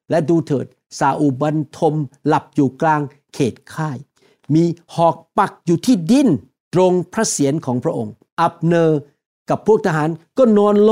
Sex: male